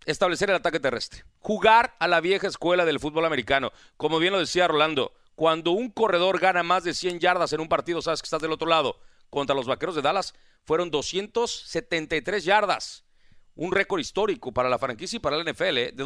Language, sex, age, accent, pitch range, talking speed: Spanish, male, 40-59, Mexican, 140-185 Hz, 200 wpm